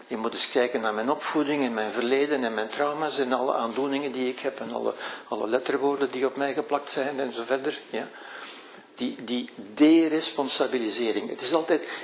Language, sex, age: Dutch, male, 60-79